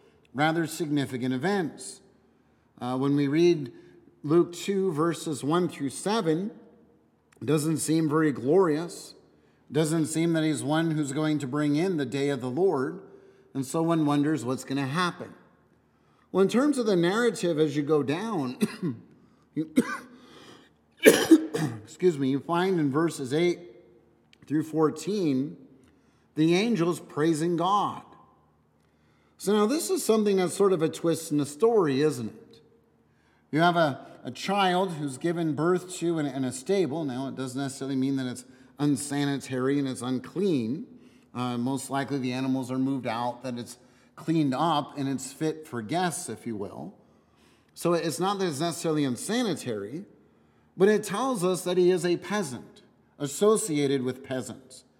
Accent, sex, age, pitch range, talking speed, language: American, male, 50-69, 135-175 Hz, 155 wpm, English